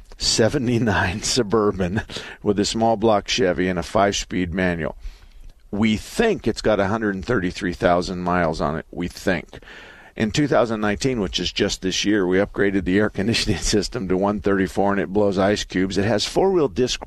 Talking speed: 160 wpm